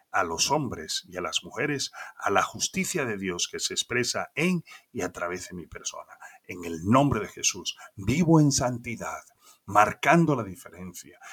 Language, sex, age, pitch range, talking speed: Spanish, male, 40-59, 100-145 Hz, 175 wpm